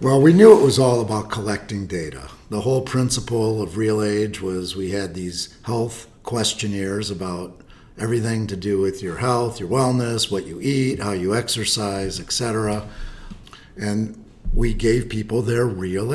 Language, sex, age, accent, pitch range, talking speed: English, male, 50-69, American, 95-115 Hz, 165 wpm